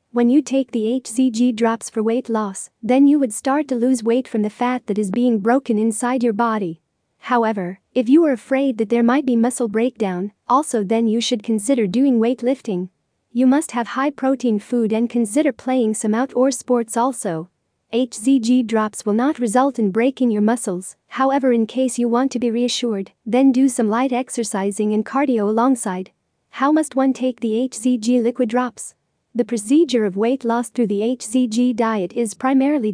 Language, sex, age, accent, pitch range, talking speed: English, female, 40-59, American, 225-260 Hz, 185 wpm